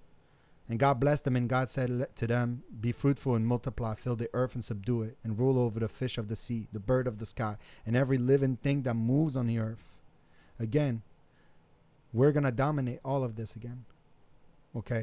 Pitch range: 115-140 Hz